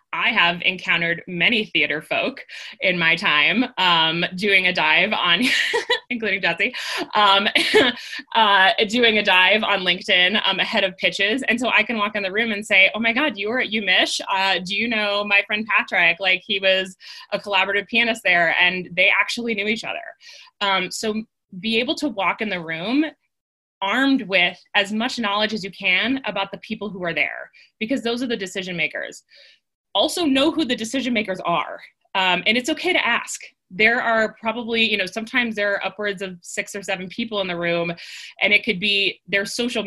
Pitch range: 185-230 Hz